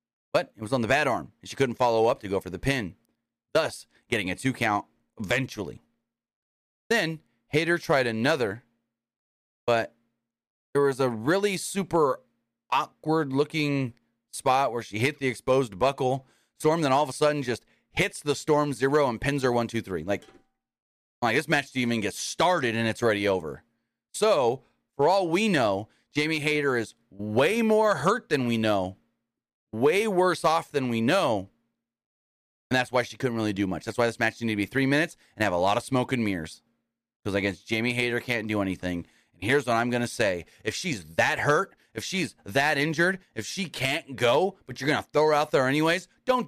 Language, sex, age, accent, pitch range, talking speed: English, male, 30-49, American, 115-150 Hz, 200 wpm